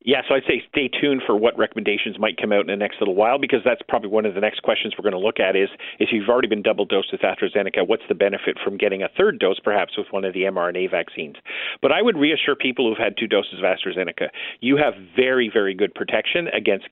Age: 50-69